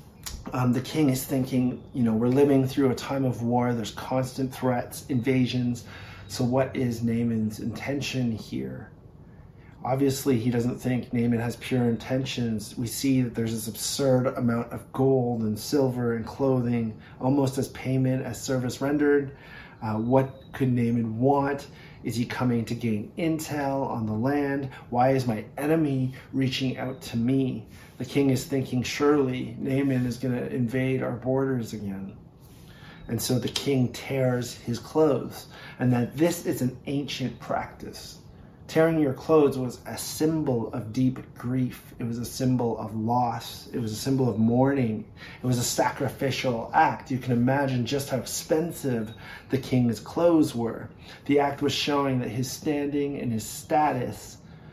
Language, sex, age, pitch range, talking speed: English, male, 30-49, 115-135 Hz, 160 wpm